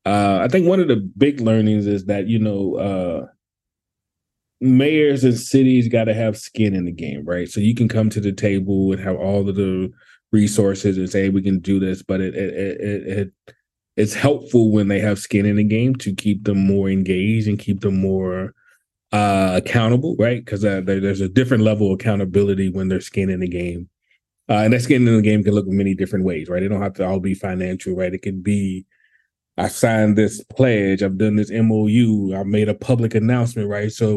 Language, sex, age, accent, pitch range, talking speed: English, male, 30-49, American, 95-110 Hz, 215 wpm